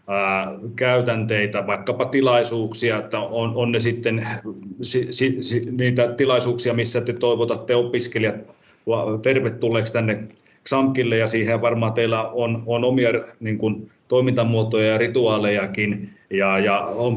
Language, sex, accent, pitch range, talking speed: Finnish, male, native, 105-120 Hz, 105 wpm